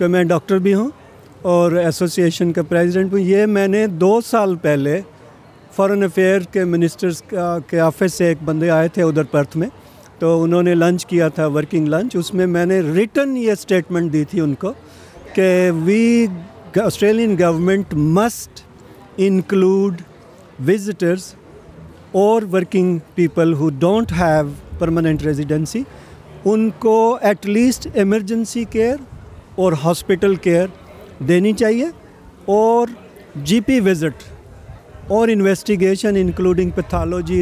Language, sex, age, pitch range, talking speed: Urdu, male, 50-69, 170-210 Hz, 125 wpm